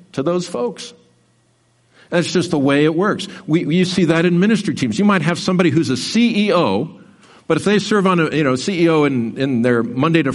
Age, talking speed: 50-69, 220 wpm